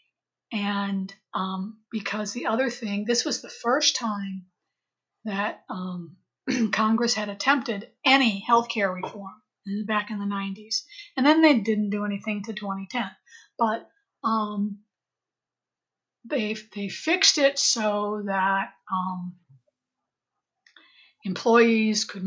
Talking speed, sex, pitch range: 115 wpm, female, 200-250 Hz